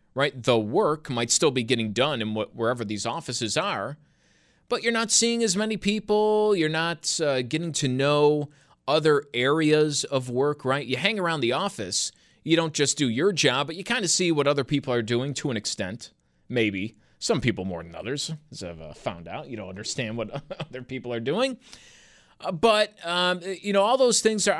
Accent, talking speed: American, 205 wpm